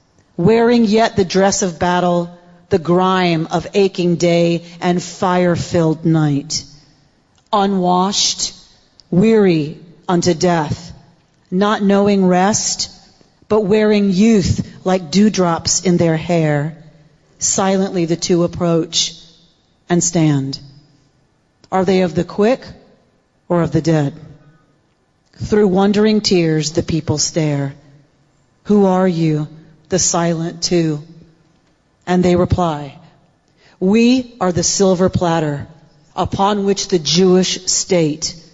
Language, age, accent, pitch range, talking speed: English, 40-59, American, 150-185 Hz, 105 wpm